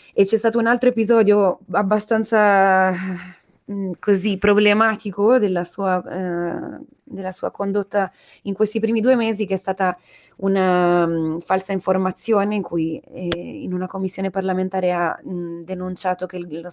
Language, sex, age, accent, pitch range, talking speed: Italian, female, 20-39, native, 170-195 Hz, 145 wpm